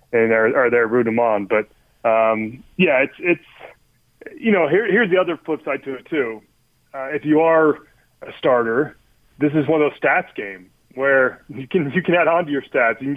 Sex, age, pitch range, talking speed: male, 30-49, 130-160 Hz, 215 wpm